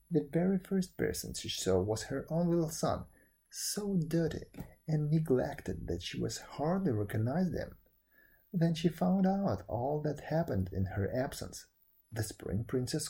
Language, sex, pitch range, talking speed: English, male, 110-165 Hz, 155 wpm